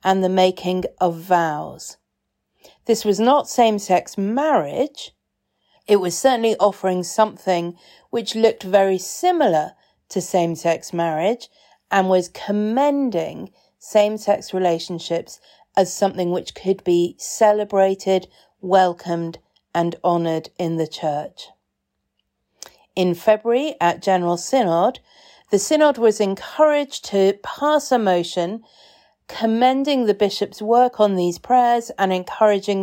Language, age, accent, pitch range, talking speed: English, 40-59, British, 175-225 Hz, 110 wpm